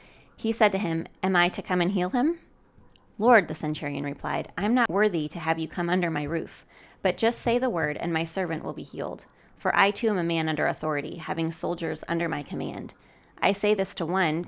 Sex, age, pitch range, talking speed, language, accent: female, 20-39, 160-195 Hz, 230 wpm, English, American